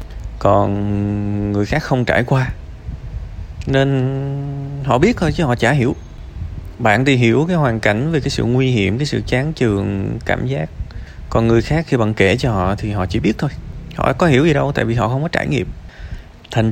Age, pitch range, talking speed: 20-39, 90-125 Hz, 205 wpm